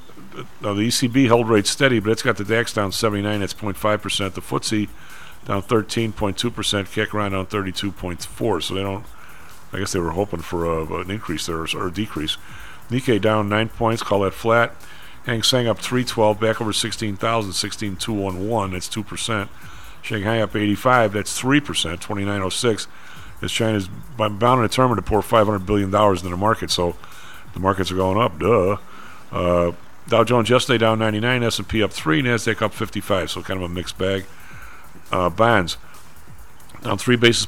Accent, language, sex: American, English, male